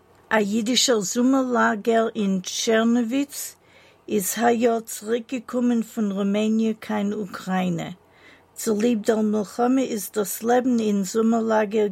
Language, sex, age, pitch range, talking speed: English, female, 50-69, 200-235 Hz, 100 wpm